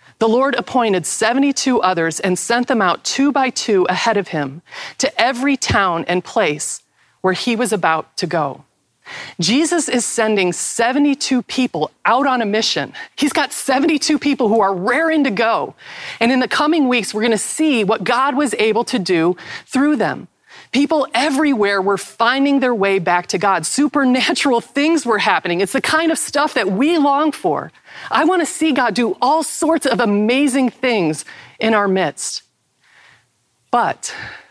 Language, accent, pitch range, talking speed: English, American, 195-275 Hz, 170 wpm